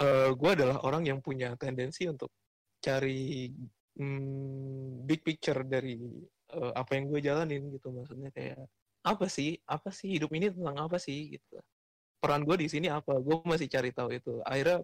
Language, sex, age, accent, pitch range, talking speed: Indonesian, male, 20-39, native, 130-150 Hz, 170 wpm